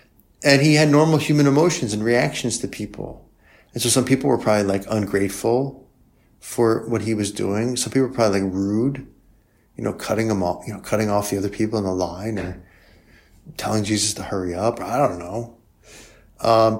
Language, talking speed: English, 195 wpm